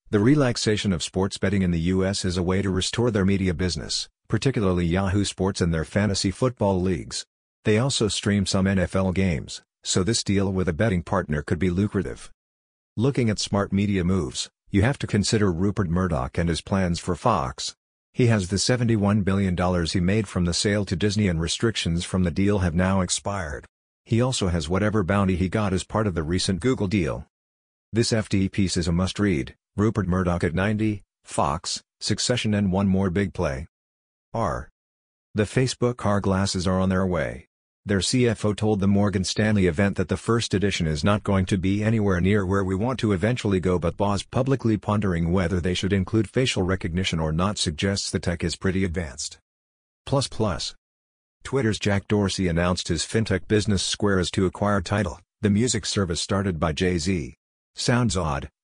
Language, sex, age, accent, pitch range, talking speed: English, male, 50-69, American, 90-105 Hz, 185 wpm